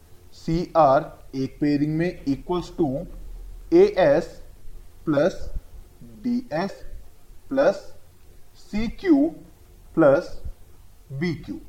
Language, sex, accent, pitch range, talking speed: Hindi, male, native, 130-180 Hz, 75 wpm